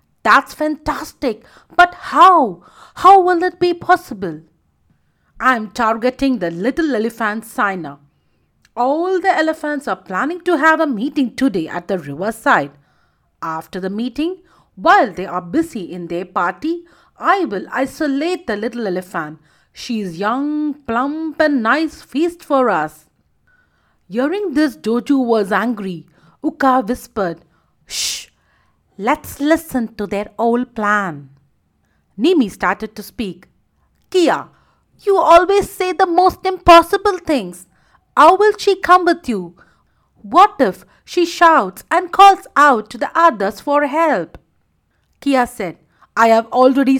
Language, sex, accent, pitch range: English, female, Indian, 200-330 Hz